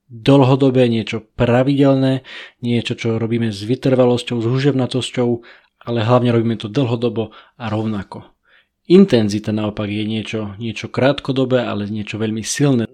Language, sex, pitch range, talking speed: Slovak, male, 110-130 Hz, 125 wpm